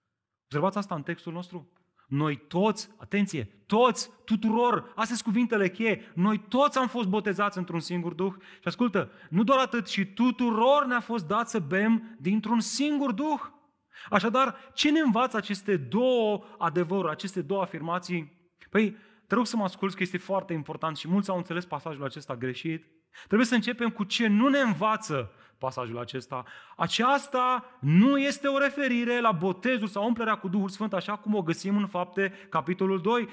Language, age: Romanian, 30-49